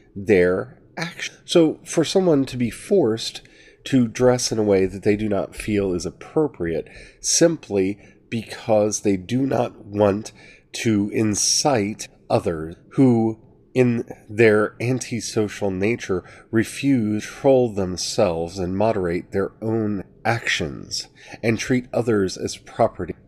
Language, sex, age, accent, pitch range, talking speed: English, male, 40-59, American, 95-125 Hz, 125 wpm